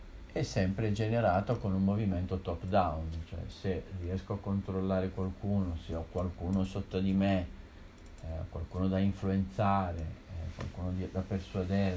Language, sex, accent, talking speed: Italian, male, native, 135 wpm